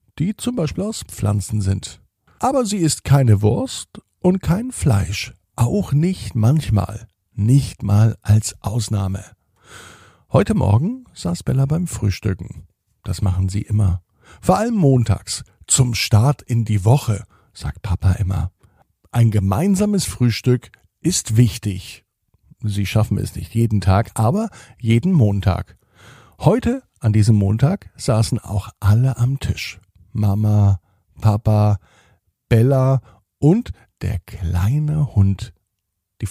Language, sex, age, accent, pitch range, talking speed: German, male, 50-69, German, 100-135 Hz, 120 wpm